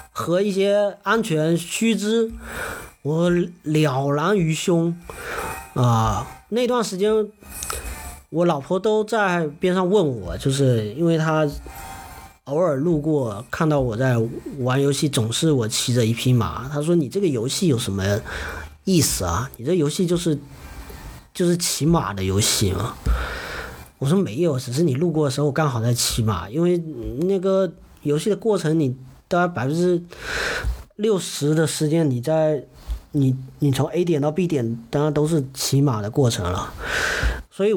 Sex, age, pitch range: male, 40-59, 125-185 Hz